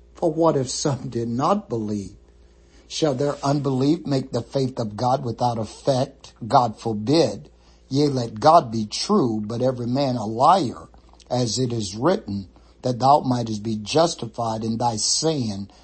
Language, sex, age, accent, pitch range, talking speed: English, male, 60-79, American, 105-135 Hz, 155 wpm